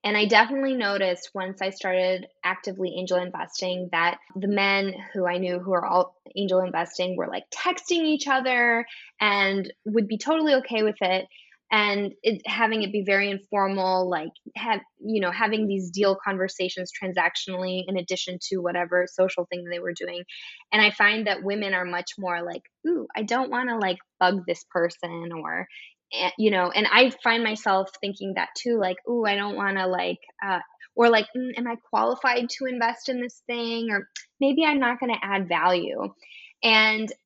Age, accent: 10-29, American